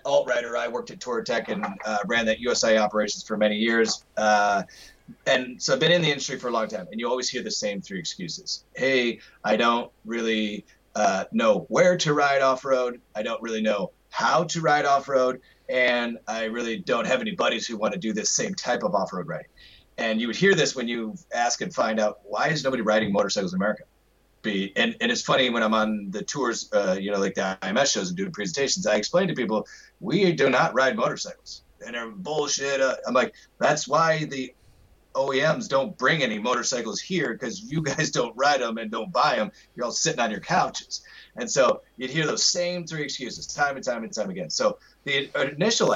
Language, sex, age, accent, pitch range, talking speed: English, male, 30-49, American, 110-150 Hz, 215 wpm